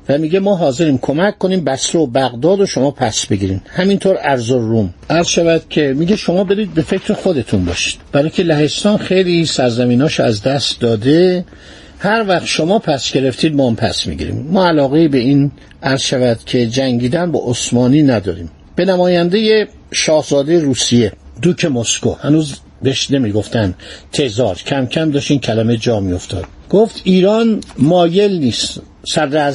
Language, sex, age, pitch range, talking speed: Persian, male, 60-79, 125-175 Hz, 145 wpm